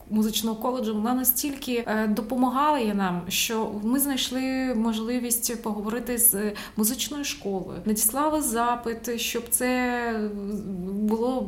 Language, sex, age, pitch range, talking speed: Ukrainian, female, 20-39, 215-255 Hz, 100 wpm